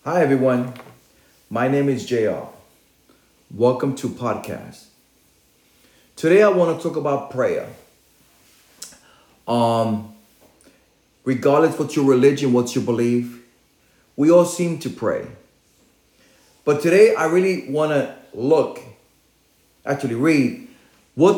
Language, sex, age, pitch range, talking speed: English, male, 40-59, 125-175 Hz, 110 wpm